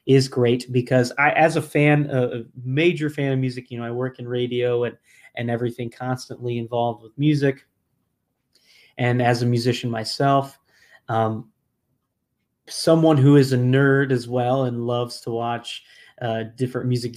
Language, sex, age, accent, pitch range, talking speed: English, male, 20-39, American, 120-140 Hz, 155 wpm